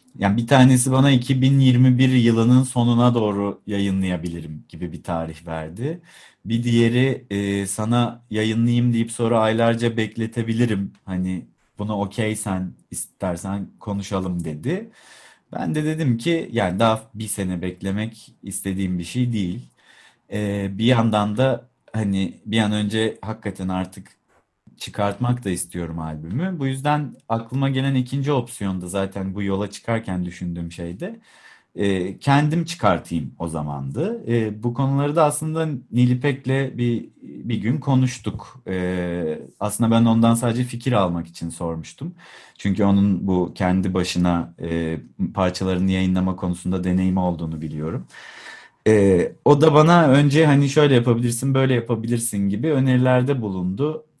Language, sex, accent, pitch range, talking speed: Turkish, male, native, 95-125 Hz, 125 wpm